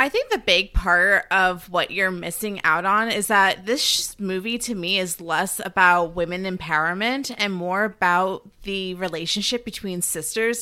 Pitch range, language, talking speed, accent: 190-235 Hz, English, 165 wpm, American